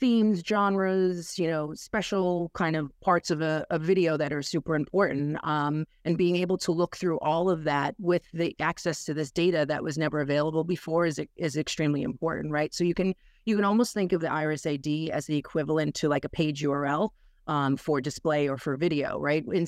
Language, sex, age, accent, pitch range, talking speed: English, female, 40-59, American, 150-175 Hz, 210 wpm